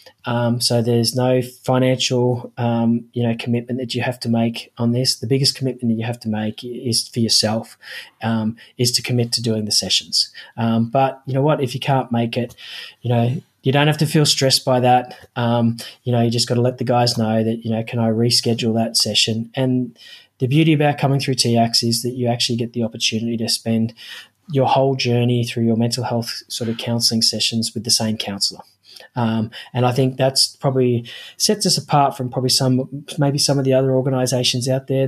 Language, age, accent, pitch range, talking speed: English, 20-39, Australian, 115-130 Hz, 215 wpm